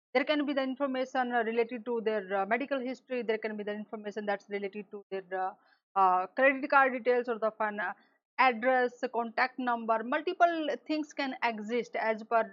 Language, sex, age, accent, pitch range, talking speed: English, female, 30-49, Indian, 215-255 Hz, 180 wpm